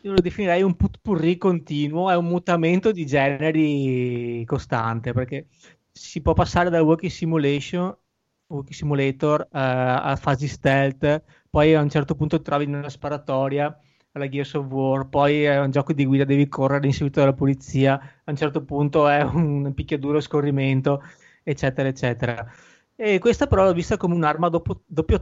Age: 20-39